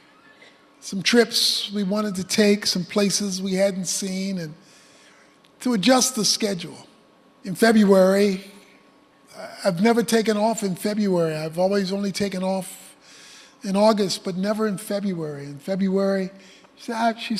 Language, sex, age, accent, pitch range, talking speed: English, male, 50-69, American, 185-225 Hz, 130 wpm